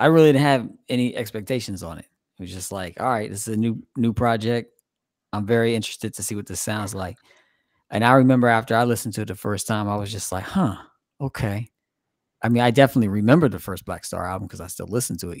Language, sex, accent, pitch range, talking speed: English, male, American, 105-130 Hz, 240 wpm